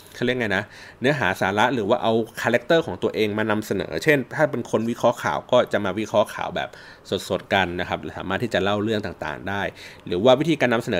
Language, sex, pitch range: Thai, male, 105-140 Hz